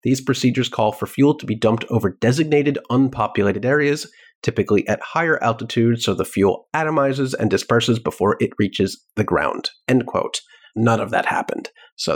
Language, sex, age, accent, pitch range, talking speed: English, male, 30-49, American, 105-135 Hz, 170 wpm